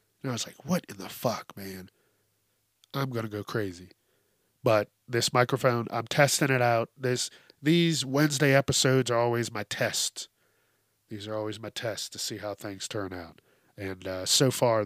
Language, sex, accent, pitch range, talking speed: English, male, American, 100-135 Hz, 180 wpm